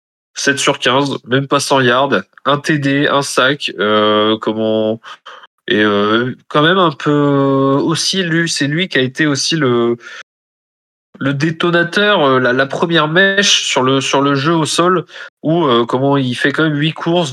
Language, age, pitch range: French, 20-39, 125-165 Hz